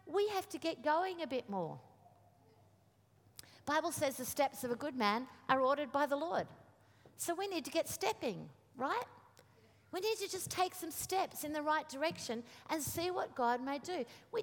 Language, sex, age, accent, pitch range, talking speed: English, female, 50-69, Australian, 215-300 Hz, 190 wpm